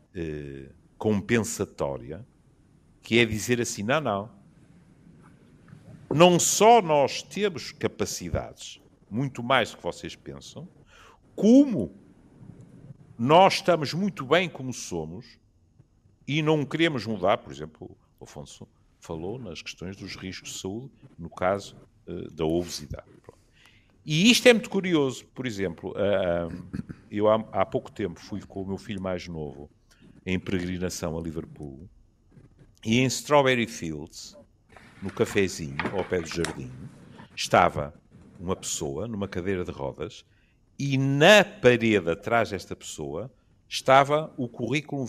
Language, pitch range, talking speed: Portuguese, 95-145 Hz, 125 wpm